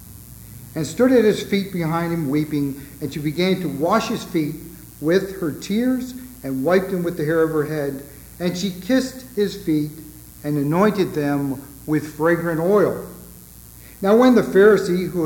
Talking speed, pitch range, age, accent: 170 wpm, 150-195 Hz, 60-79, American